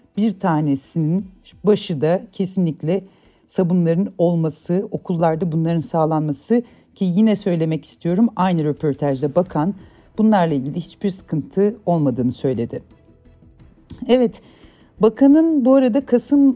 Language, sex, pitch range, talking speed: Turkish, female, 160-230 Hz, 100 wpm